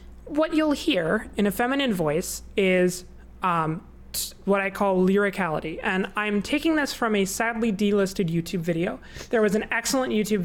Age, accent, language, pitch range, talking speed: 20-39, American, English, 180-235 Hz, 160 wpm